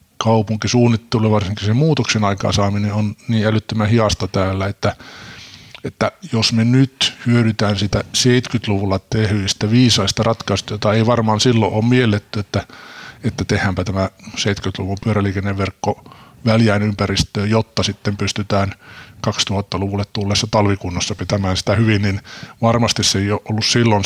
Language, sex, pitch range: Finnish, male, 100-115 Hz